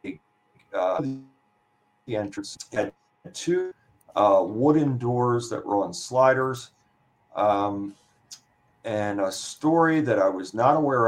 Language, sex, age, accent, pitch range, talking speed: English, male, 50-69, American, 105-140 Hz, 115 wpm